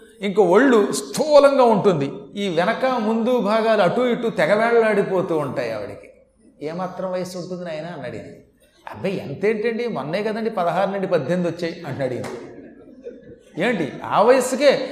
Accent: native